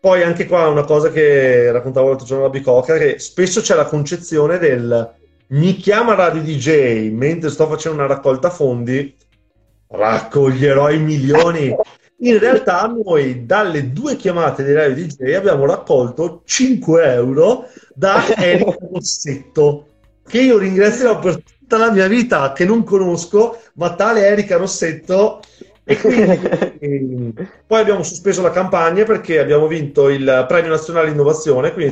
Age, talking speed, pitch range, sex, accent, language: 30-49, 140 wpm, 135-180 Hz, male, native, Italian